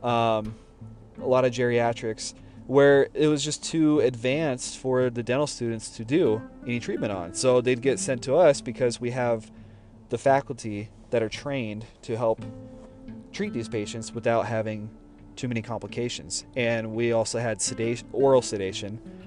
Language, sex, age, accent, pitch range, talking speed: English, male, 30-49, American, 110-125 Hz, 160 wpm